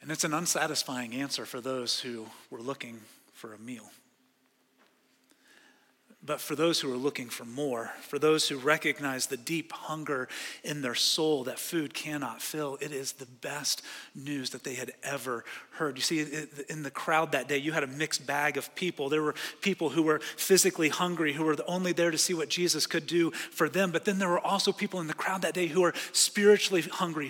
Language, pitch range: English, 150-200 Hz